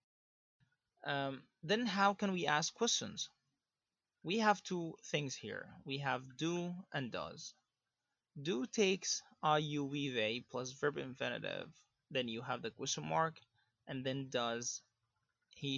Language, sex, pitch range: English, male, 125-165 Hz